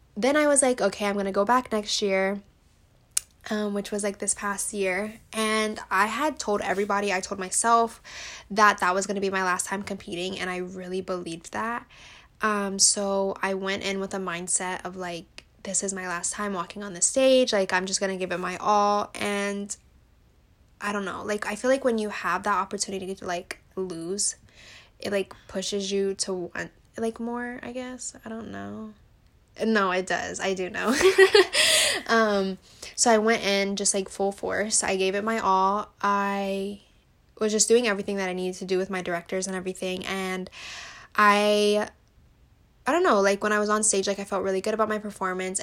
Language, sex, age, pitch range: English, female, 10-29, 190-210 Hz